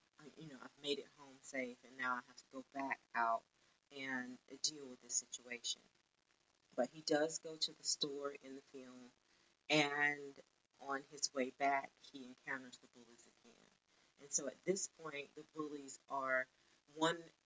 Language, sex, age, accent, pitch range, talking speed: English, female, 30-49, American, 130-155 Hz, 170 wpm